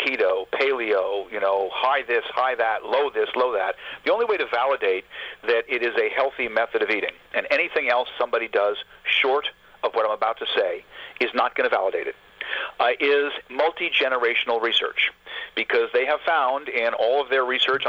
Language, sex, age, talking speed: English, male, 50-69, 190 wpm